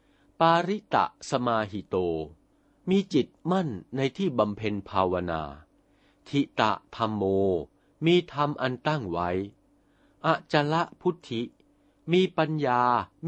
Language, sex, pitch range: Thai, male, 105-165 Hz